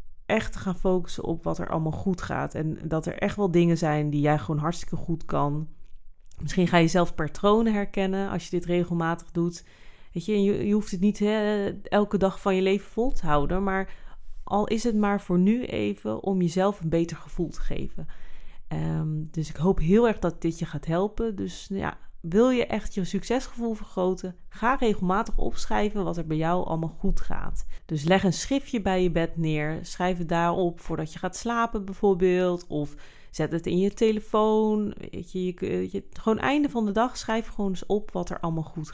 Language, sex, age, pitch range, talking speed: Dutch, female, 30-49, 155-200 Hz, 195 wpm